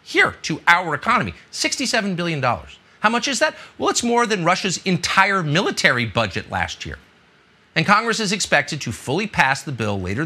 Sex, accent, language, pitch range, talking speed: male, American, English, 135-225 Hz, 175 wpm